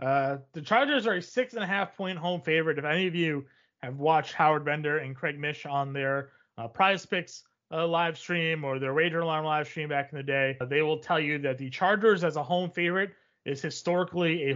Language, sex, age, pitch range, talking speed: English, male, 30-49, 145-185 Hz, 230 wpm